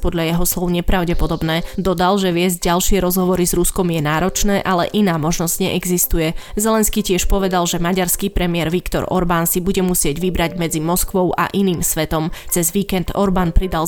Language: Slovak